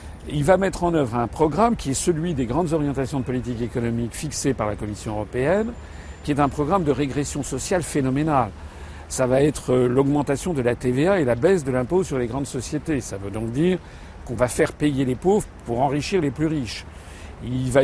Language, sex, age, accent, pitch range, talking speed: French, male, 50-69, French, 125-160 Hz, 210 wpm